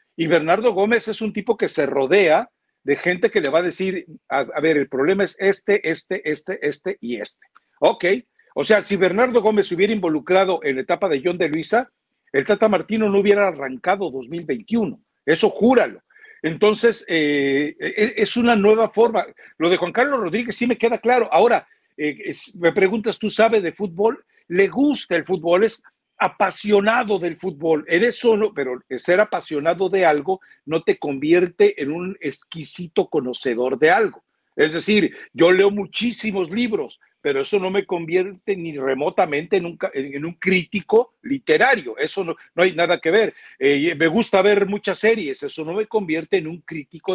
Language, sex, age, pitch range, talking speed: Spanish, male, 60-79, 165-220 Hz, 175 wpm